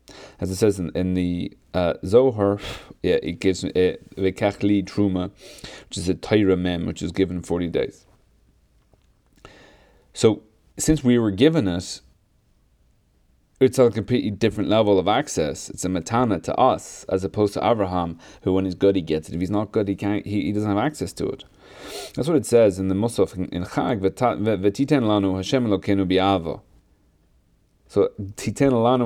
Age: 30-49